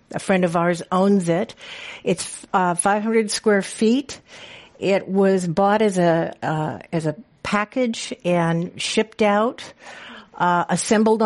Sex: female